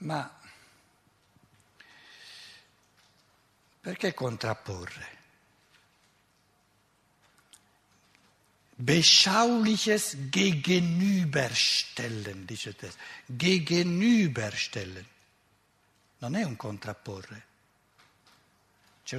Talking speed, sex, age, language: 45 wpm, male, 60-79, Italian